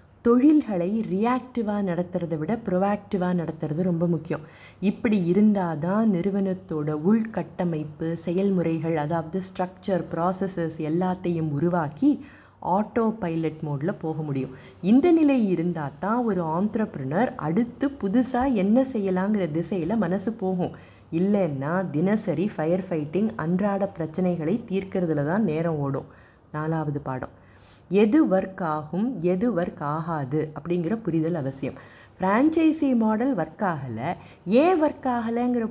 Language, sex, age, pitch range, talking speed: Tamil, female, 20-39, 160-215 Hz, 110 wpm